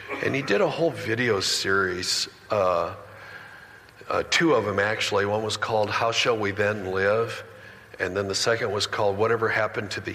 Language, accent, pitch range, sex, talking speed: English, American, 105-125 Hz, male, 185 wpm